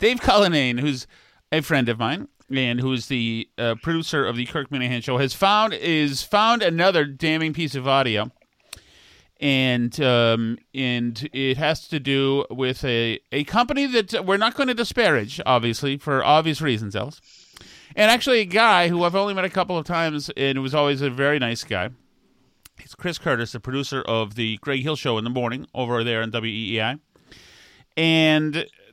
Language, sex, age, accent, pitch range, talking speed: English, male, 30-49, American, 120-155 Hz, 180 wpm